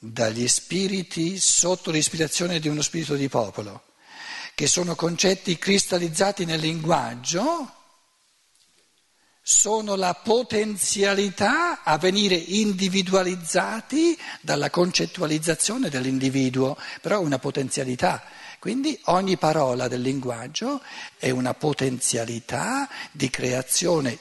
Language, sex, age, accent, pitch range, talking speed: Italian, male, 60-79, native, 130-200 Hz, 95 wpm